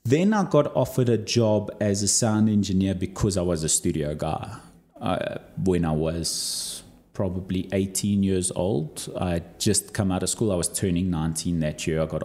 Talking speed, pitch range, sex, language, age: 185 wpm, 85-110 Hz, male, English, 30-49